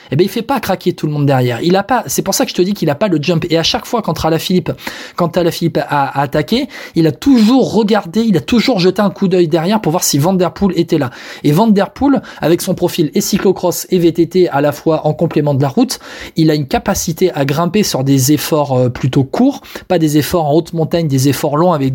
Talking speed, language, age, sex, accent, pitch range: 265 wpm, French, 20-39, male, French, 150-190 Hz